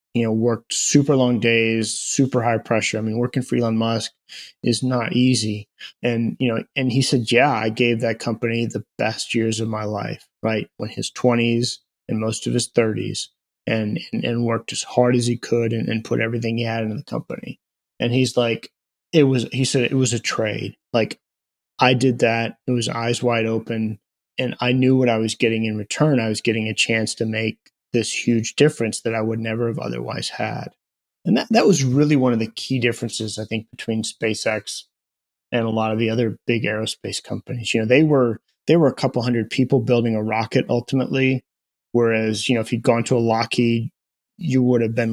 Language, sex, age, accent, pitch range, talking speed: English, male, 20-39, American, 110-125 Hz, 210 wpm